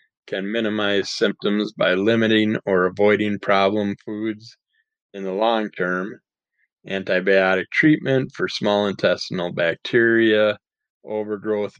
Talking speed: 100 wpm